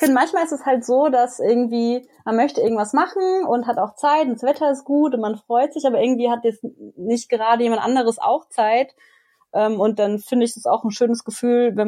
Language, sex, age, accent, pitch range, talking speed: German, female, 30-49, German, 215-255 Hz, 230 wpm